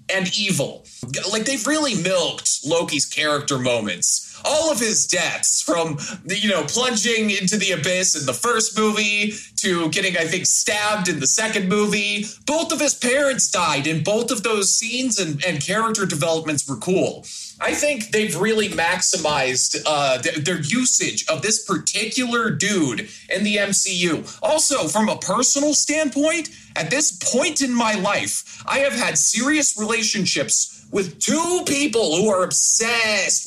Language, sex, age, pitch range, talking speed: English, male, 30-49, 175-260 Hz, 155 wpm